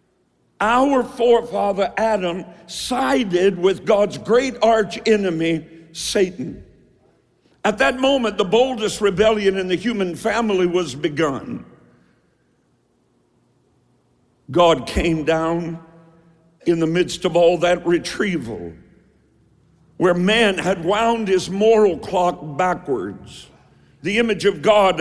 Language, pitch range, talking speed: English, 160-205 Hz, 105 wpm